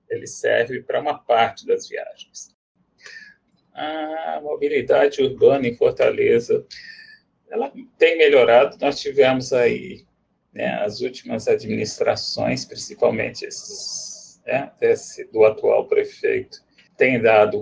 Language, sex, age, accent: Portuguese, male, 40-59, Brazilian